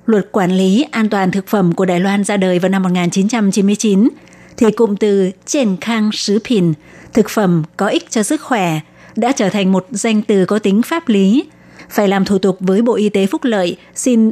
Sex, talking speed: female, 210 wpm